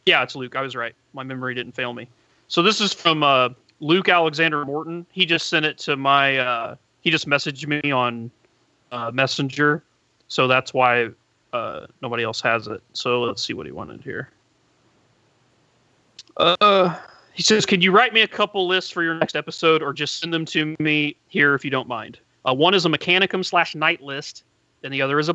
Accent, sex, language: American, male, English